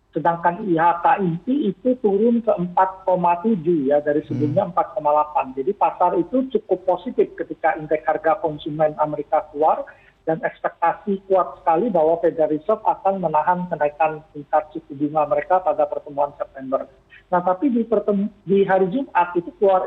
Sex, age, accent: male, 40-59, native